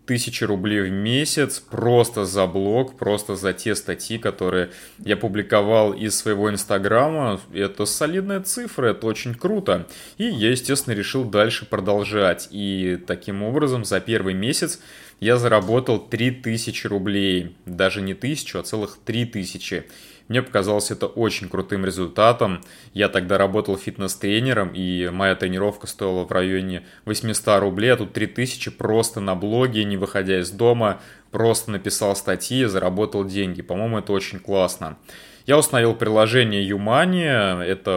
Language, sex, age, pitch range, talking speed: Russian, male, 20-39, 95-115 Hz, 140 wpm